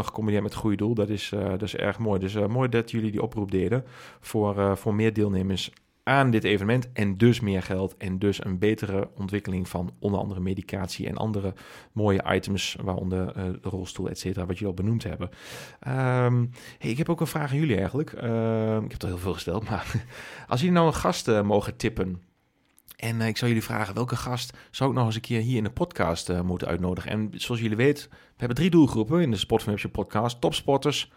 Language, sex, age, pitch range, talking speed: Dutch, male, 40-59, 95-120 Hz, 220 wpm